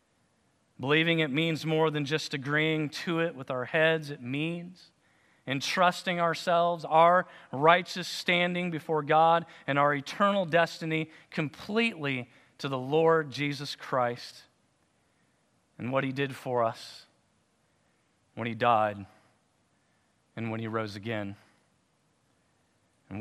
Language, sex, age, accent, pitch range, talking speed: English, male, 40-59, American, 130-170 Hz, 120 wpm